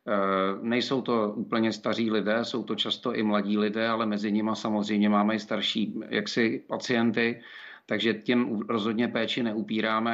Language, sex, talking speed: Czech, male, 150 wpm